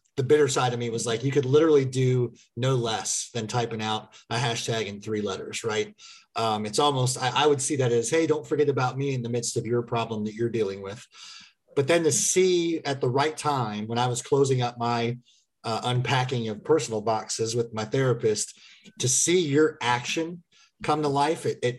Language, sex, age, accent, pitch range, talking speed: English, male, 30-49, American, 115-140 Hz, 210 wpm